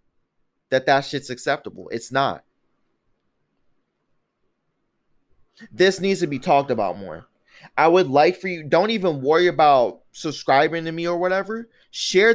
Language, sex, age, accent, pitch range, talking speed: English, male, 20-39, American, 150-215 Hz, 135 wpm